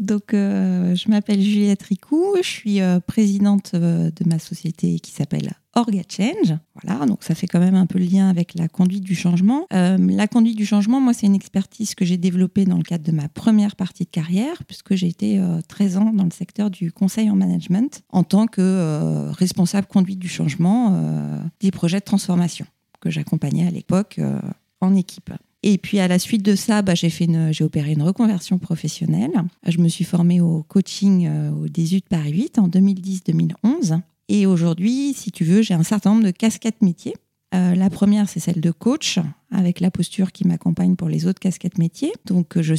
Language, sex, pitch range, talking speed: French, female, 175-205 Hz, 205 wpm